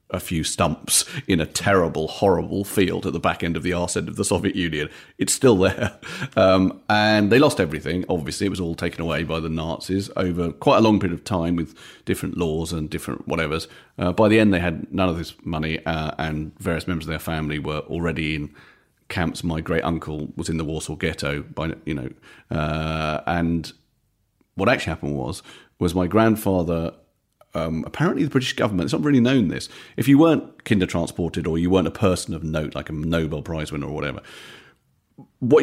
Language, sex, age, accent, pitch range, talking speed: English, male, 40-59, British, 80-100 Hz, 200 wpm